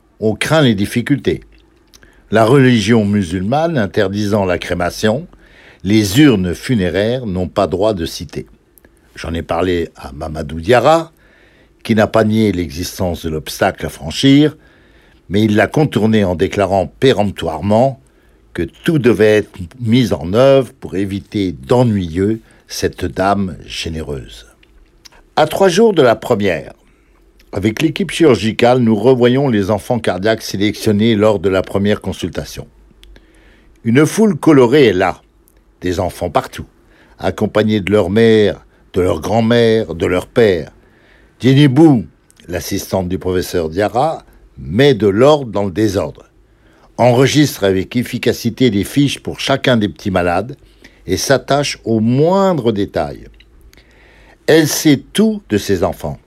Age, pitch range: 60-79, 95-130 Hz